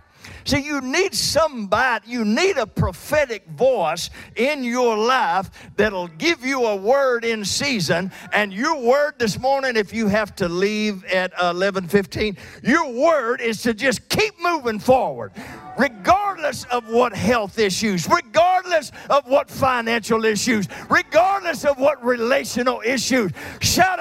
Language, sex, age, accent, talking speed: English, male, 50-69, American, 135 wpm